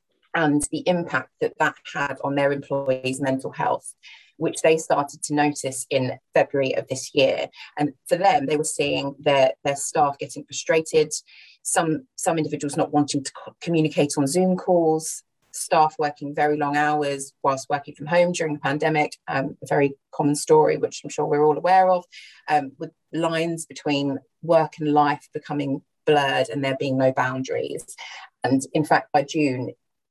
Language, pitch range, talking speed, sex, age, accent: English, 135-160 Hz, 170 wpm, female, 30-49, British